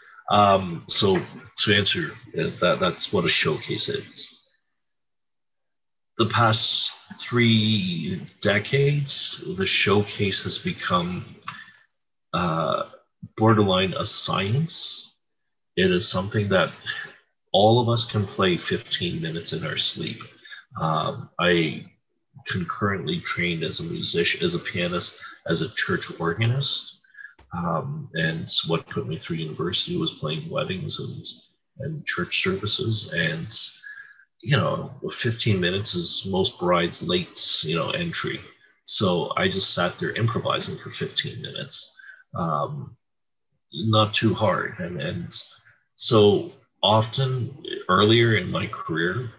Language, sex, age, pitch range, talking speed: English, male, 40-59, 95-140 Hz, 120 wpm